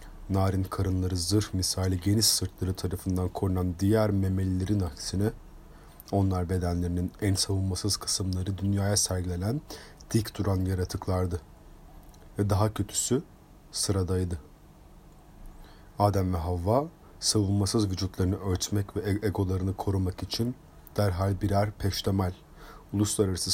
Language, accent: Turkish, native